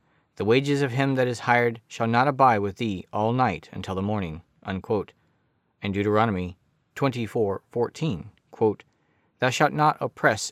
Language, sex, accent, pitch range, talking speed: English, male, American, 100-135 Hz, 145 wpm